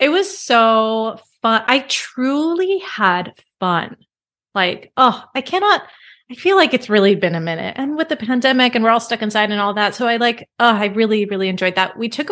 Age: 30-49